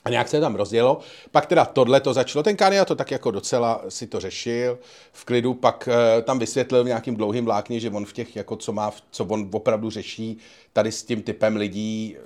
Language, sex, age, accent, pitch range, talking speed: Czech, male, 40-59, native, 105-145 Hz, 210 wpm